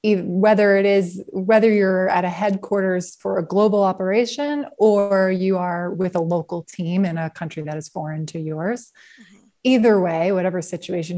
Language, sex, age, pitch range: English, female, 20-39, 175-215 Hz